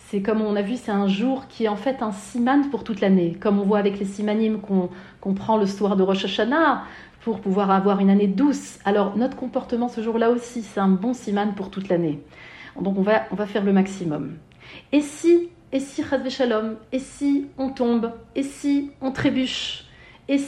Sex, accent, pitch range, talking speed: female, French, 215-290 Hz, 230 wpm